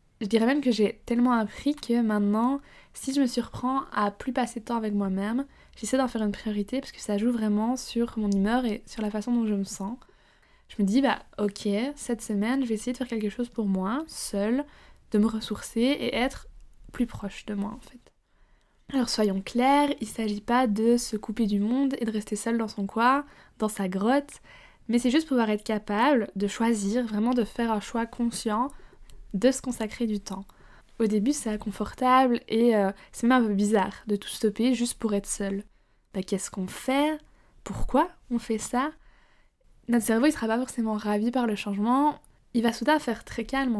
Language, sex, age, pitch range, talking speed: French, female, 20-39, 210-255 Hz, 210 wpm